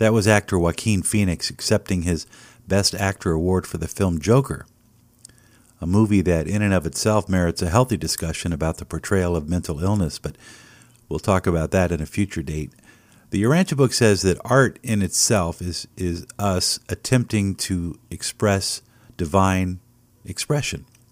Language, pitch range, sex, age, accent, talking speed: English, 90-115 Hz, male, 50-69, American, 160 wpm